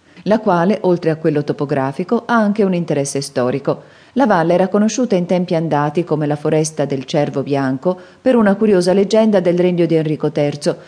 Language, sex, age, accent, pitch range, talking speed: Italian, female, 40-59, native, 145-185 Hz, 180 wpm